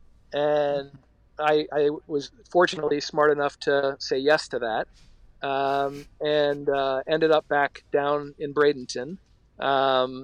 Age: 40-59